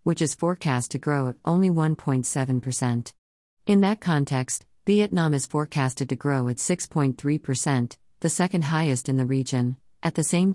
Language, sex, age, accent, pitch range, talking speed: English, female, 50-69, American, 130-160 Hz, 155 wpm